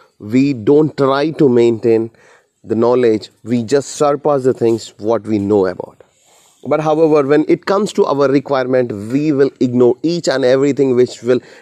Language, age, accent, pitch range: English, 30-49, Indian, 115-150 Hz